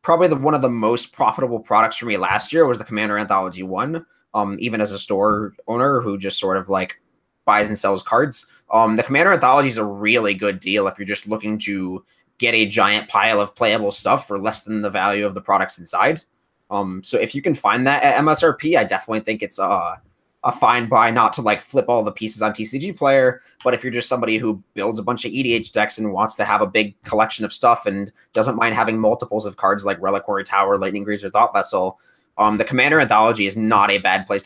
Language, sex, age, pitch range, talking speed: English, male, 20-39, 105-125 Hz, 235 wpm